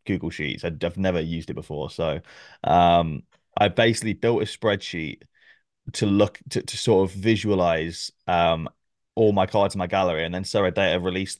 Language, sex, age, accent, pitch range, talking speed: English, male, 20-39, British, 90-120 Hz, 180 wpm